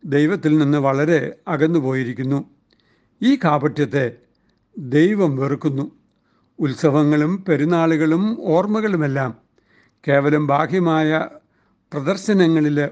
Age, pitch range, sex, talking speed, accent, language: 60-79, 140-170 Hz, male, 65 wpm, native, Malayalam